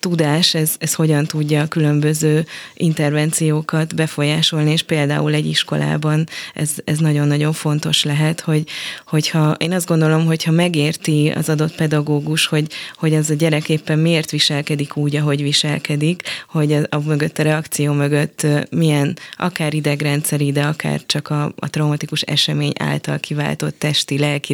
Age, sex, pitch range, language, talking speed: 20-39, female, 145-155 Hz, Hungarian, 145 wpm